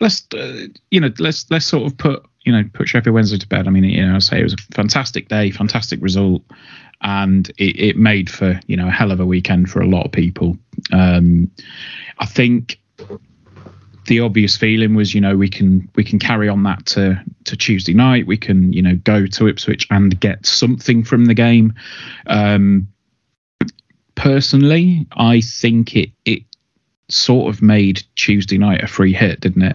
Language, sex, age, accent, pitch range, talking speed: English, male, 30-49, British, 95-110 Hz, 190 wpm